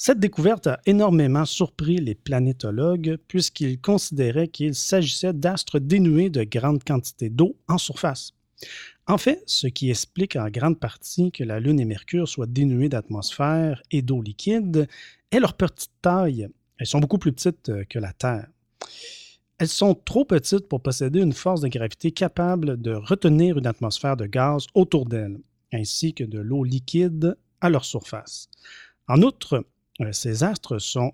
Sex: male